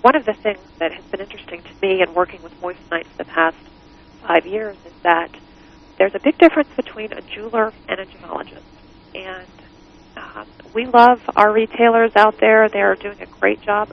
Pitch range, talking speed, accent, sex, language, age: 185-225 Hz, 195 wpm, American, female, English, 40-59